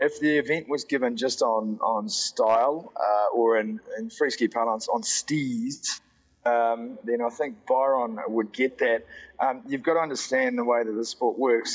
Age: 30-49